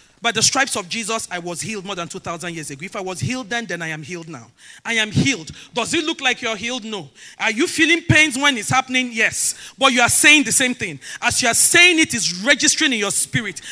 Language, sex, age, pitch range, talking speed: English, male, 40-59, 175-265 Hz, 255 wpm